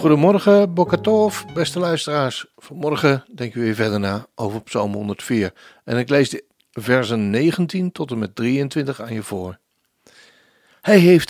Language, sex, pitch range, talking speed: Dutch, male, 110-170 Hz, 150 wpm